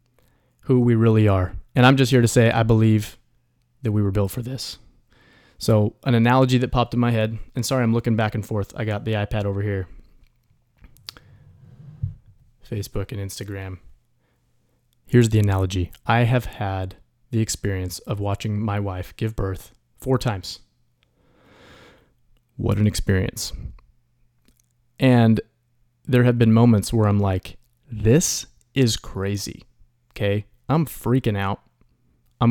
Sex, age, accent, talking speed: male, 20-39, American, 140 wpm